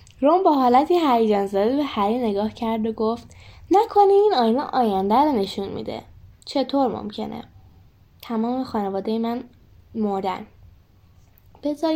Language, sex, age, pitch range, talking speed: Persian, female, 10-29, 190-260 Hz, 120 wpm